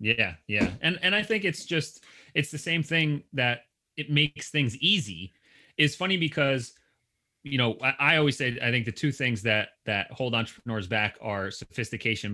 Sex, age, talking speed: male, 30-49, 185 wpm